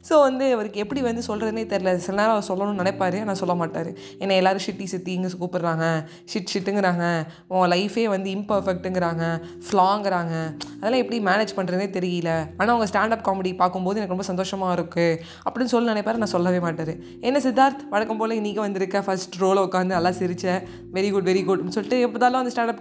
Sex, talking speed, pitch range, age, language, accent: female, 175 wpm, 180-220 Hz, 20-39, Tamil, native